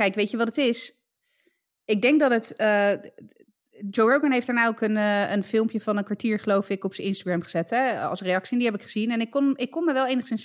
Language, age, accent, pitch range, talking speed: Dutch, 20-39, Dutch, 190-250 Hz, 260 wpm